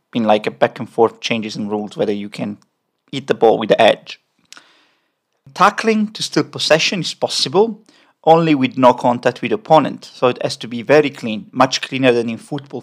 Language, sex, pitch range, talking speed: English, male, 125-170 Hz, 200 wpm